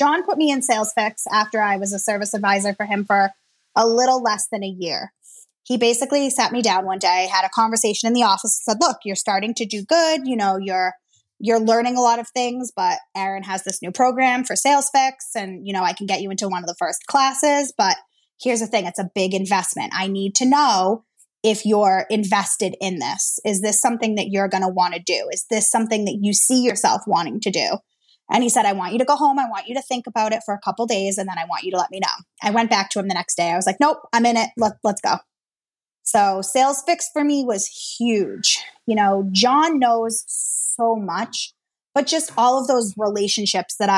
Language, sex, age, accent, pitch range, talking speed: English, female, 20-39, American, 195-245 Hz, 240 wpm